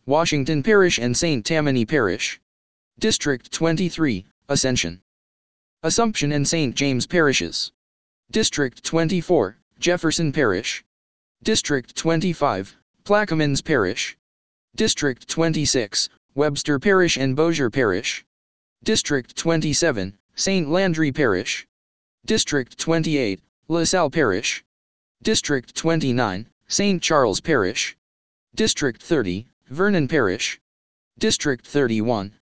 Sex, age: male, 20-39